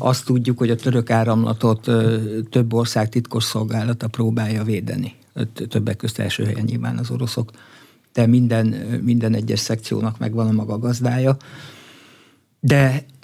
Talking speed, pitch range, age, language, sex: 125 wpm, 115-125 Hz, 60-79, Hungarian, male